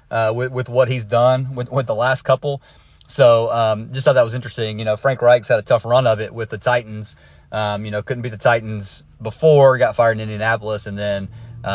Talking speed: 230 wpm